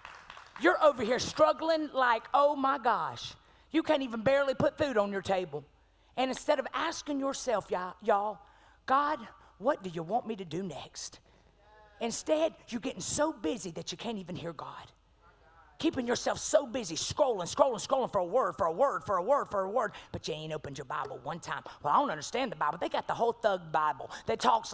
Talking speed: 205 wpm